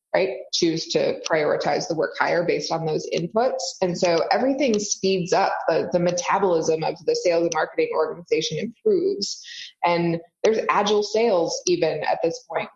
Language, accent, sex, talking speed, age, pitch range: English, American, female, 160 wpm, 20-39, 165-260 Hz